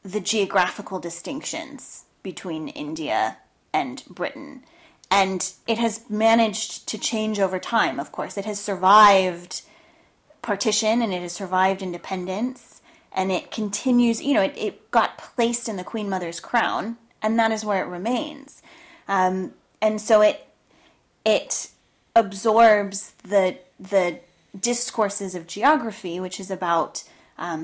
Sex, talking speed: female, 130 wpm